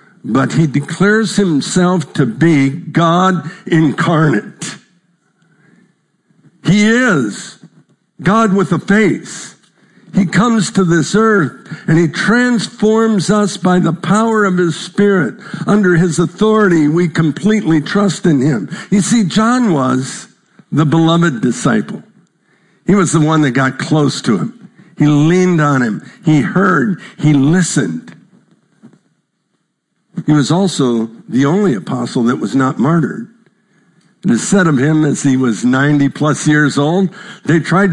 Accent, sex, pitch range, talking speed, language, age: American, male, 155-195 Hz, 135 wpm, English, 60-79